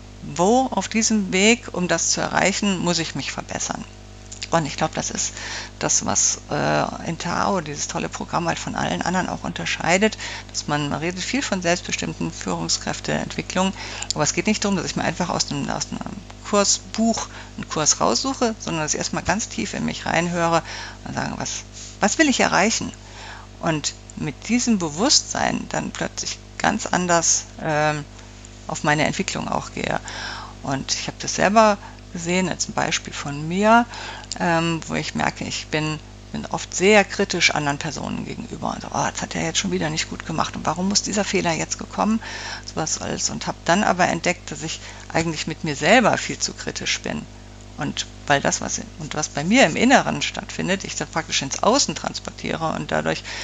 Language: German